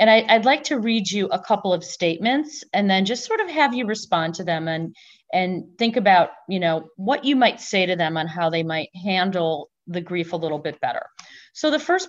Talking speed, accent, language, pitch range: 230 wpm, American, English, 165-215 Hz